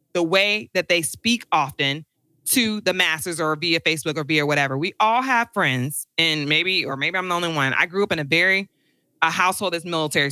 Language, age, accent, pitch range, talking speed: English, 20-39, American, 160-215 Hz, 215 wpm